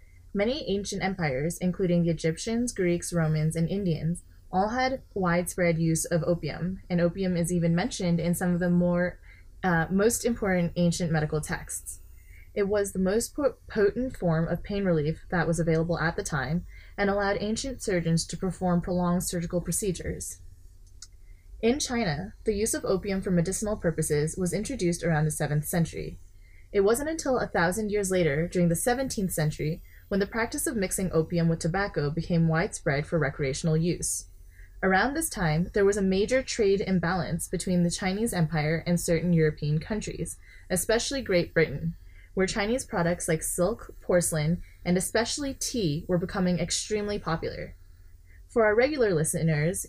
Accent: American